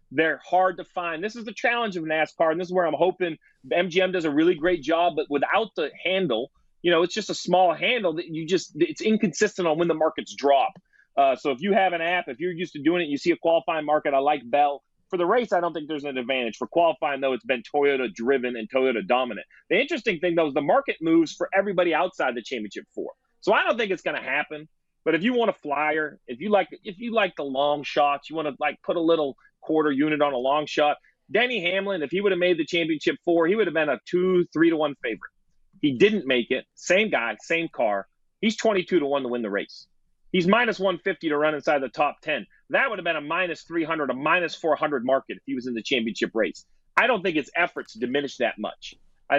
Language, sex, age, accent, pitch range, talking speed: English, male, 30-49, American, 150-190 Hz, 245 wpm